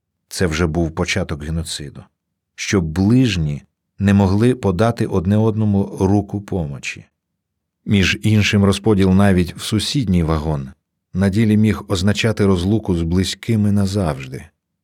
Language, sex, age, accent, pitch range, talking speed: Ukrainian, male, 40-59, native, 85-105 Hz, 115 wpm